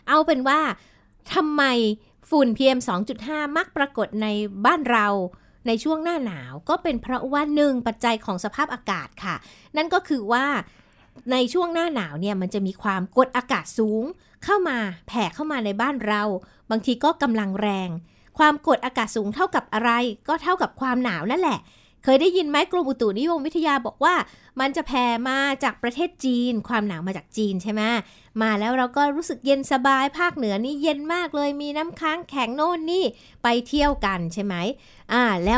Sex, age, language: female, 60-79, Thai